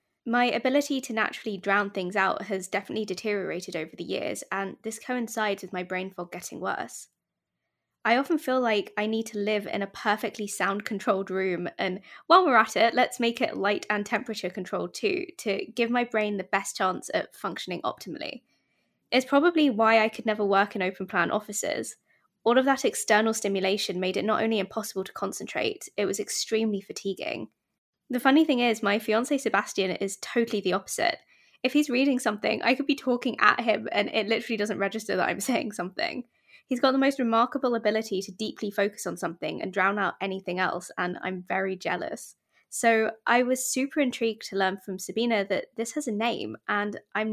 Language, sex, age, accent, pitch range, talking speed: English, female, 20-39, British, 195-240 Hz, 190 wpm